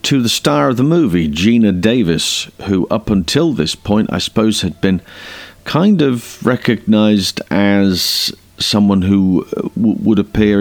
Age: 40-59